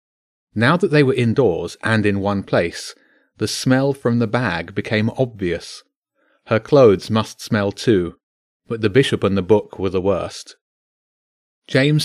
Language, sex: English, male